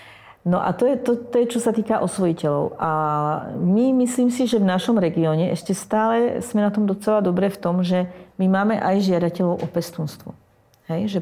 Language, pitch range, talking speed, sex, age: Slovak, 175-210 Hz, 200 wpm, female, 40-59